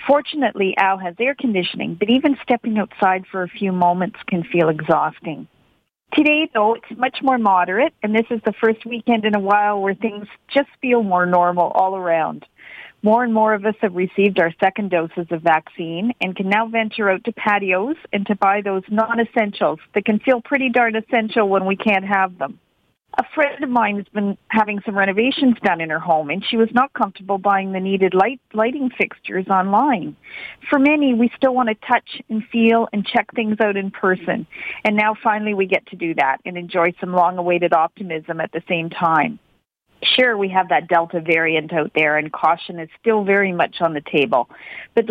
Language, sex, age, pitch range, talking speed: English, female, 40-59, 180-230 Hz, 200 wpm